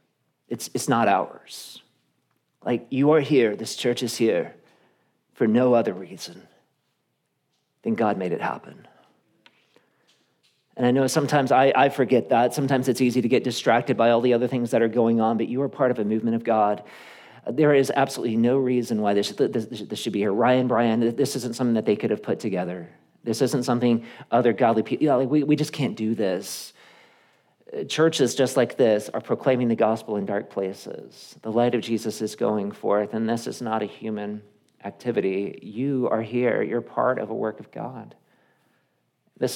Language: English